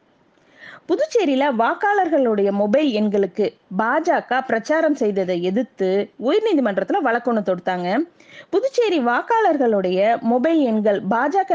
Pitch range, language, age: 220-315 Hz, Tamil, 20-39